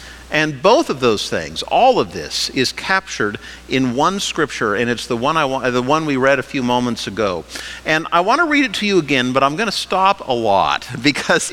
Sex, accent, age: male, American, 50-69